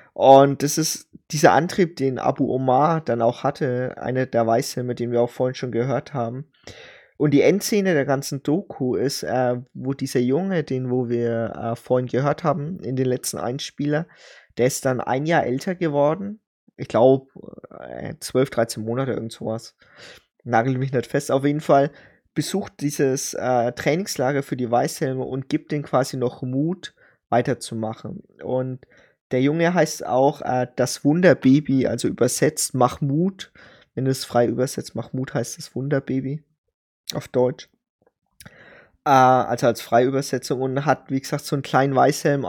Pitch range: 125-145 Hz